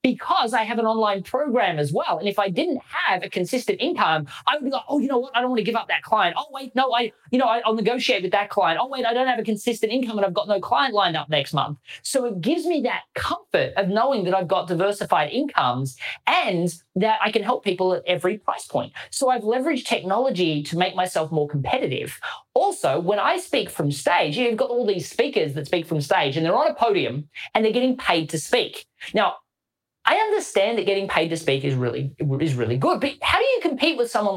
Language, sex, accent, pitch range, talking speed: English, male, Australian, 175-250 Hz, 240 wpm